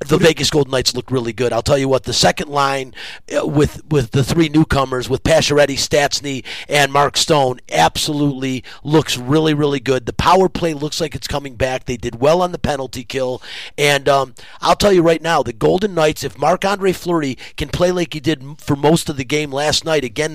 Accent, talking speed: American, 210 wpm